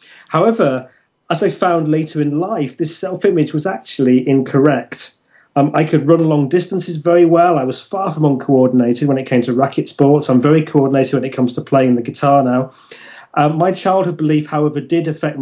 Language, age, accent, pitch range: English, 30-49, British, 135-170 Hz